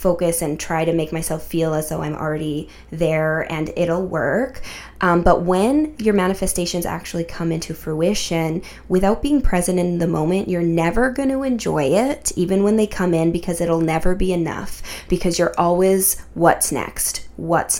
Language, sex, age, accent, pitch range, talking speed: English, female, 20-39, American, 165-190 Hz, 175 wpm